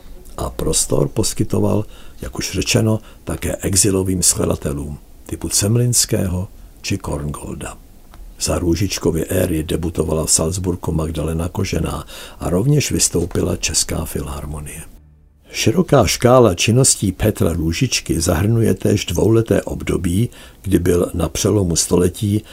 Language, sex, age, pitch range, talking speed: Czech, male, 60-79, 80-105 Hz, 105 wpm